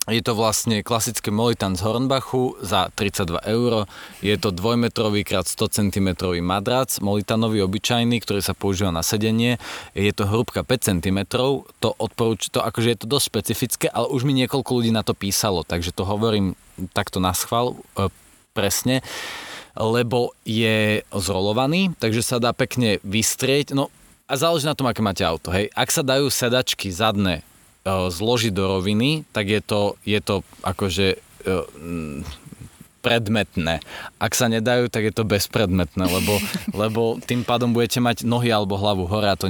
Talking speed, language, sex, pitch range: 160 wpm, Slovak, male, 95-120 Hz